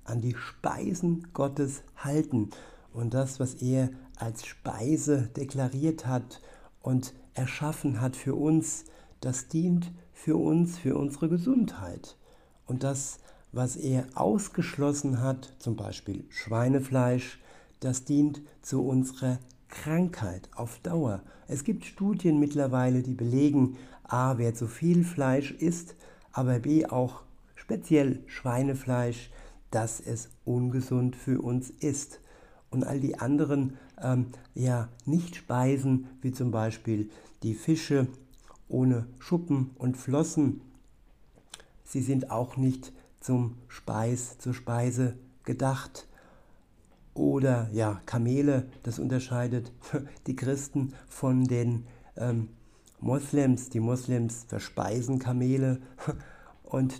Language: German